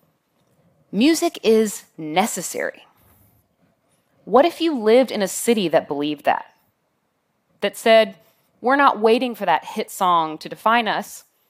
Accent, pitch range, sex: American, 175-250 Hz, female